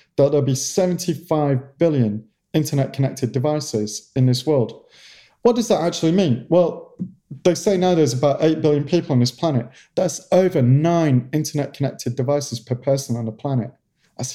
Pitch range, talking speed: 130-170 Hz, 160 wpm